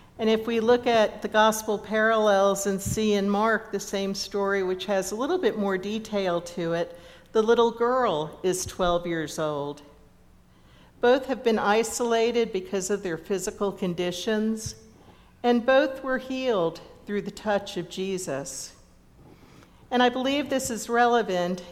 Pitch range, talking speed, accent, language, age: 185-230 Hz, 150 wpm, American, English, 50-69